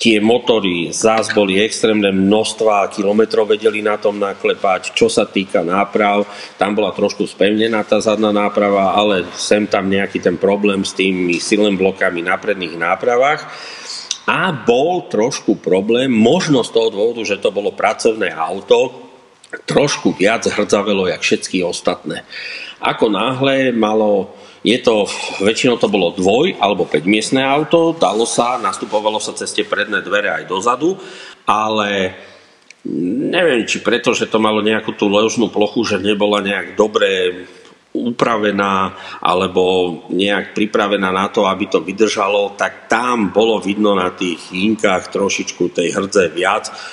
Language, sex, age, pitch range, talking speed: English, male, 40-59, 95-115 Hz, 140 wpm